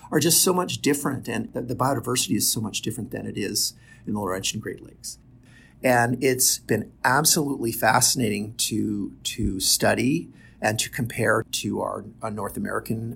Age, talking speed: 50-69, 170 wpm